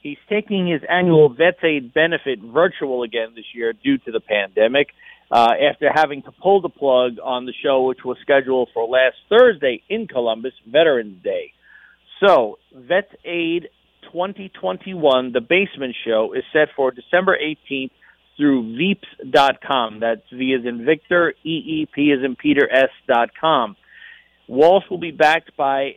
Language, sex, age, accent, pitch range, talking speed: English, male, 50-69, American, 130-180 Hz, 150 wpm